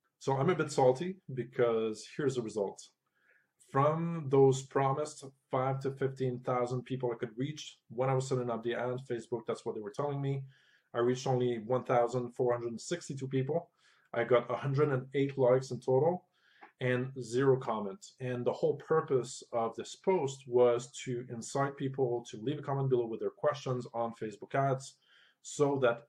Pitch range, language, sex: 120-140 Hz, English, male